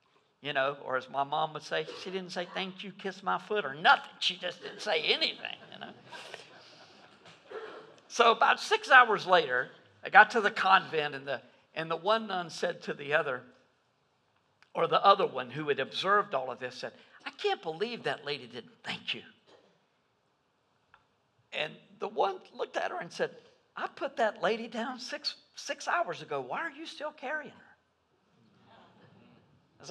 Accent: American